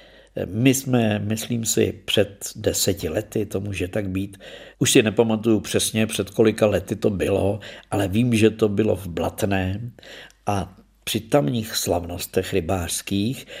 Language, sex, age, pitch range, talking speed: Czech, male, 50-69, 100-120 Hz, 140 wpm